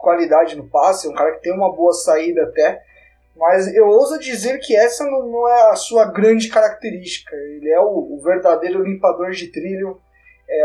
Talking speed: 190 wpm